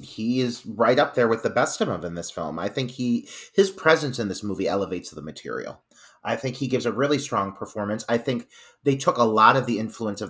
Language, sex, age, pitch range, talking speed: English, male, 30-49, 100-130 Hz, 245 wpm